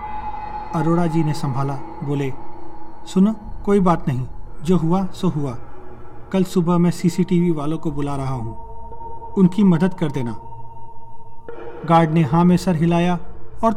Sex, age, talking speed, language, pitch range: male, 40-59, 145 wpm, Hindi, 120-190 Hz